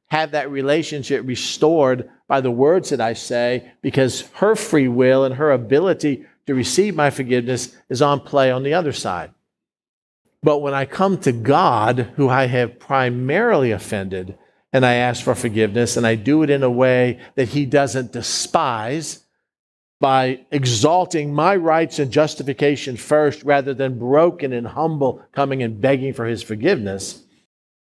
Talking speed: 155 wpm